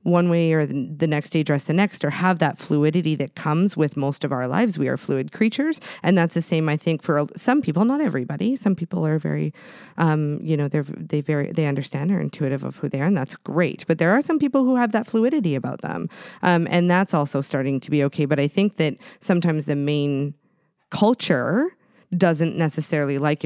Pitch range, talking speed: 145-185 Hz, 220 wpm